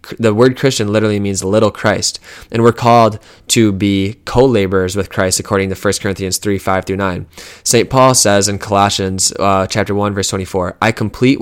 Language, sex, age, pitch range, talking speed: English, male, 20-39, 100-115 Hz, 195 wpm